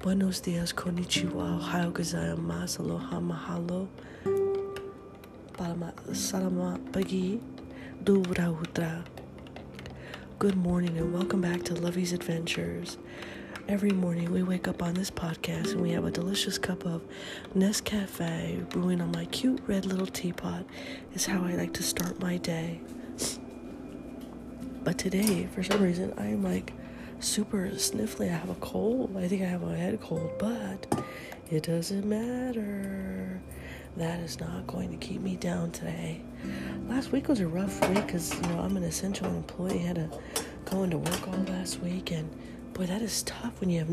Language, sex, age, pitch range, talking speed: English, female, 30-49, 155-195 Hz, 145 wpm